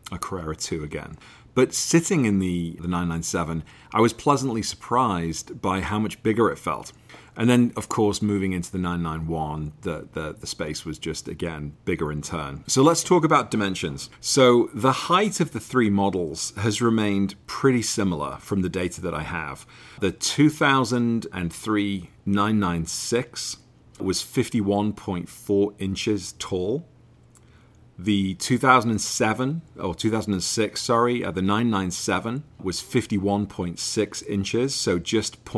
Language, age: English, 40-59